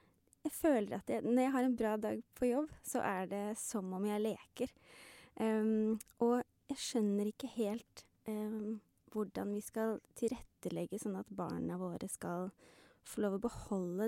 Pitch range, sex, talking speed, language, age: 195-245 Hz, female, 175 wpm, English, 20-39